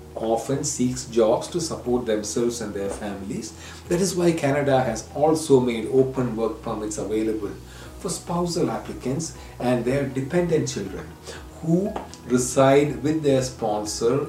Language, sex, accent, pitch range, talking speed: English, male, Indian, 95-160 Hz, 135 wpm